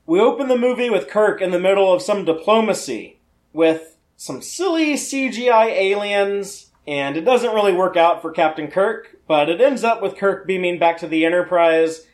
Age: 30-49